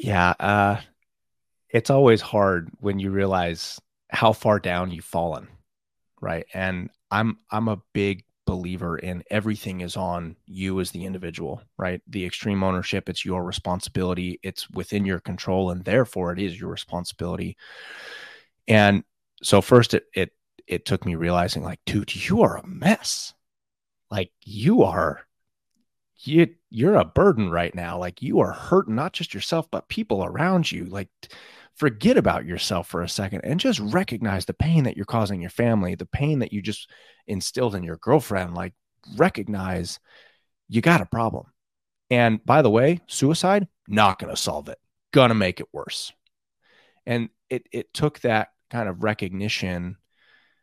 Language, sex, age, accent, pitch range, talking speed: English, male, 30-49, American, 90-115 Hz, 160 wpm